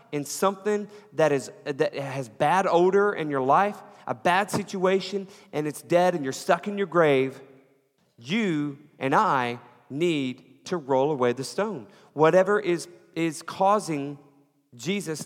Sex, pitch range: male, 140-200 Hz